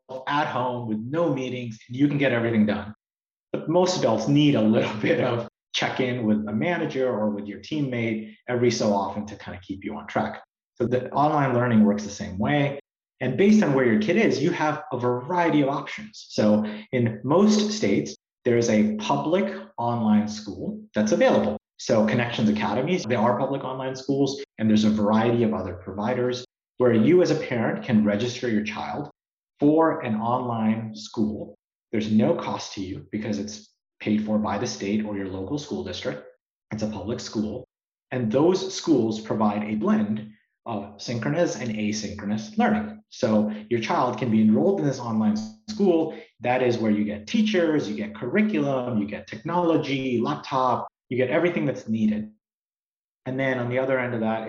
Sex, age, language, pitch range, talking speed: male, 30-49, English, 105-145 Hz, 180 wpm